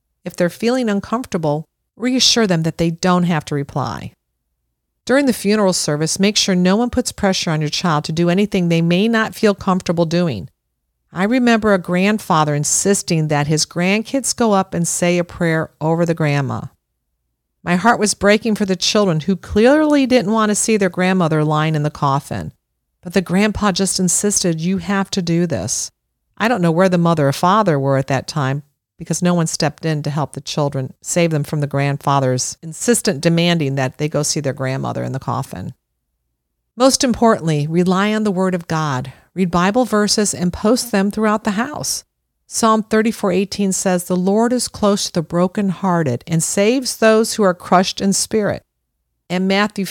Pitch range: 150-205 Hz